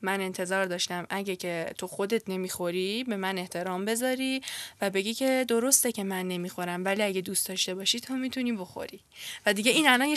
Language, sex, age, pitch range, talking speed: Persian, female, 10-29, 190-255 Hz, 190 wpm